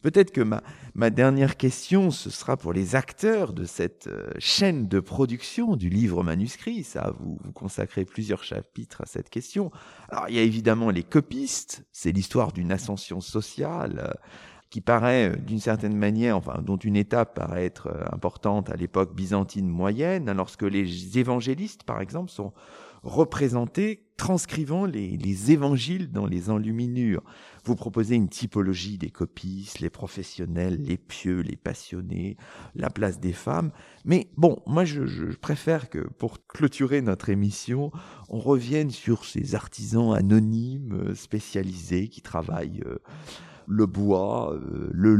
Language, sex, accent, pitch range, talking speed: French, male, French, 95-135 Hz, 145 wpm